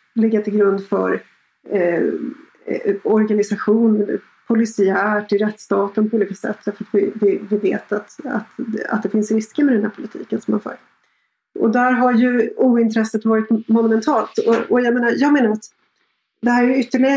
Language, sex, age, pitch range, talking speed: Swedish, female, 30-49, 210-235 Hz, 165 wpm